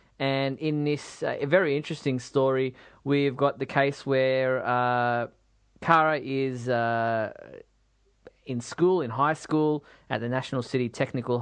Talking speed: 135 wpm